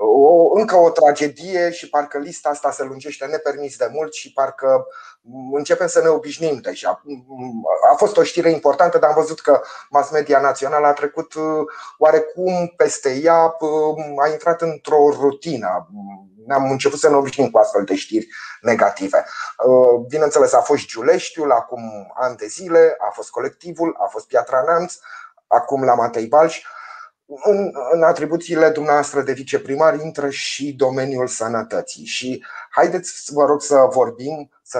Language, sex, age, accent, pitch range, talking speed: Romanian, male, 30-49, native, 135-170 Hz, 150 wpm